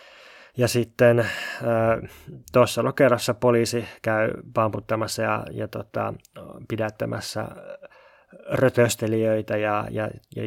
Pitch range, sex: 110-120 Hz, male